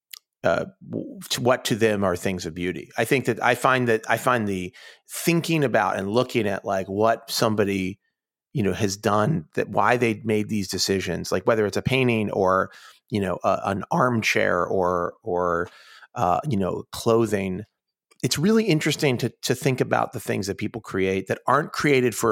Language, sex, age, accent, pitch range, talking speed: English, male, 30-49, American, 100-135 Hz, 180 wpm